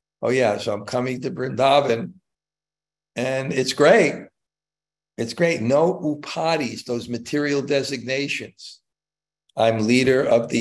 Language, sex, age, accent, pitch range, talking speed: English, male, 60-79, American, 120-155 Hz, 120 wpm